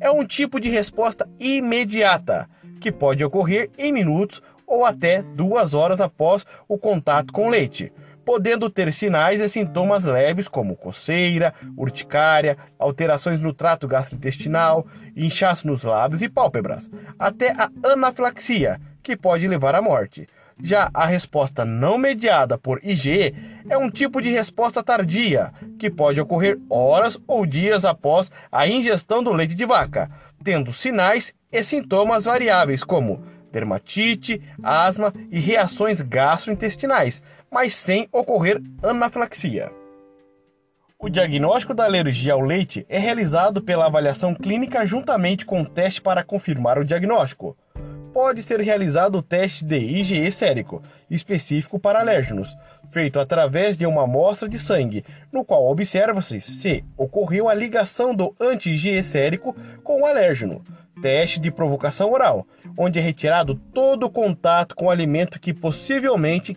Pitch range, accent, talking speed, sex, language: 150-220 Hz, Brazilian, 140 wpm, male, Portuguese